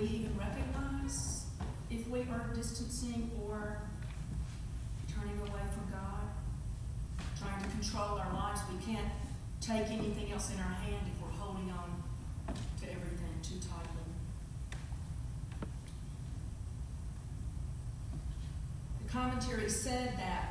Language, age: English, 40-59